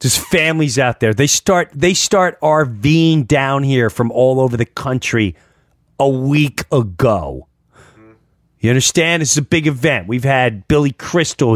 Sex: male